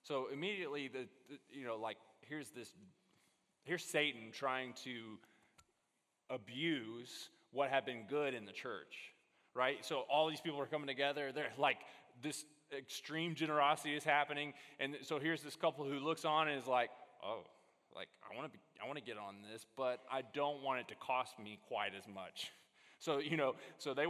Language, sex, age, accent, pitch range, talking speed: English, male, 20-39, American, 125-155 Hz, 185 wpm